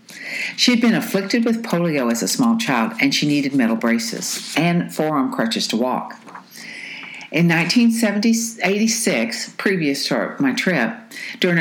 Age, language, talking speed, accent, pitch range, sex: 60-79, English, 140 wpm, American, 155-235 Hz, female